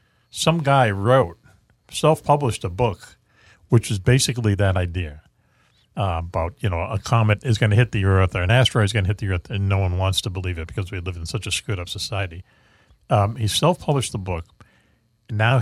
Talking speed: 210 wpm